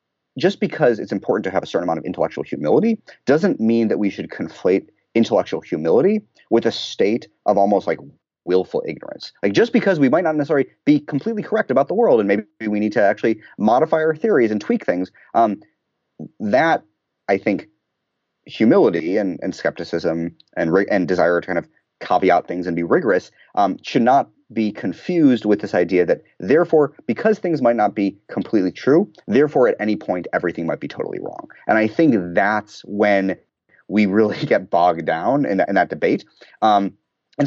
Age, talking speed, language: 30-49, 185 wpm, English